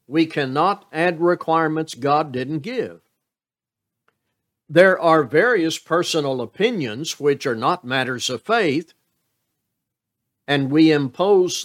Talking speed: 110 wpm